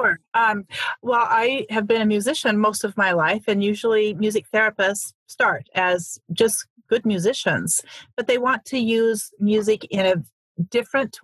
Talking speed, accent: 155 wpm, American